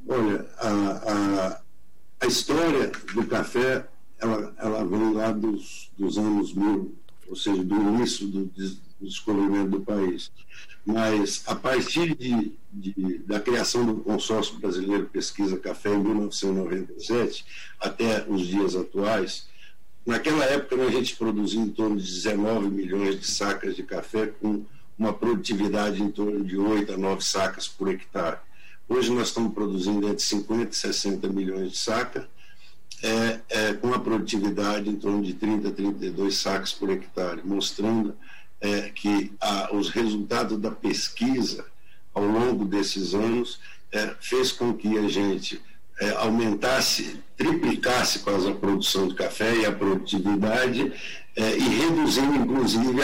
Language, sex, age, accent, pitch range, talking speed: Portuguese, male, 60-79, Brazilian, 100-110 Hz, 140 wpm